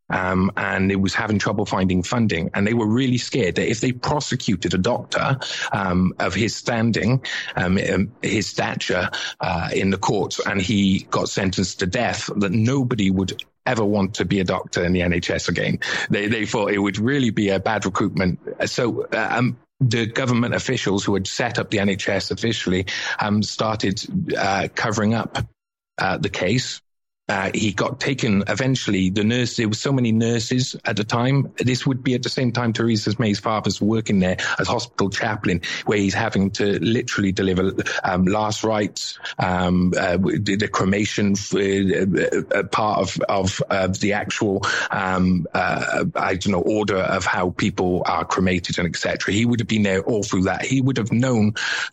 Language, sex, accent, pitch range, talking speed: English, male, British, 95-120 Hz, 180 wpm